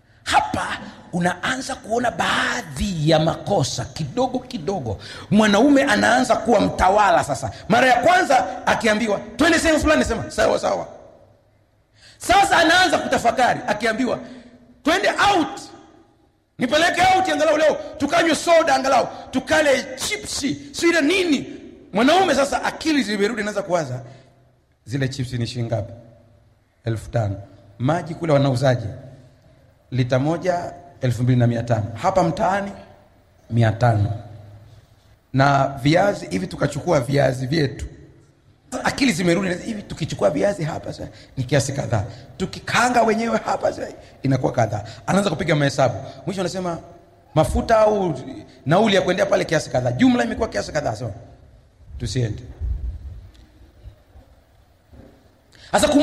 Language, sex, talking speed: Swahili, male, 95 wpm